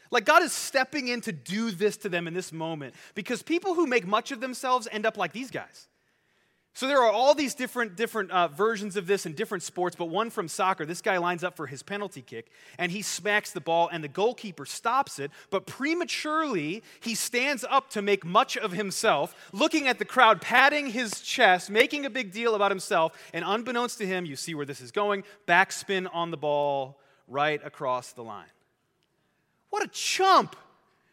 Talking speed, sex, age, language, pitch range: 200 wpm, male, 30-49, English, 180-255 Hz